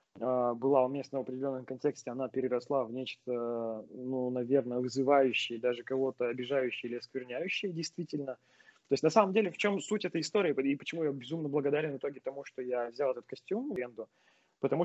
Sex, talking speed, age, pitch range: male, 170 wpm, 20-39, 125-150 Hz